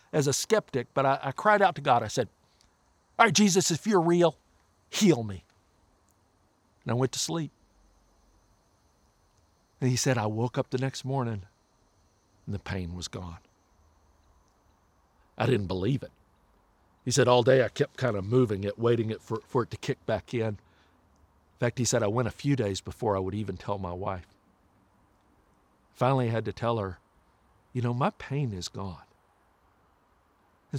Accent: American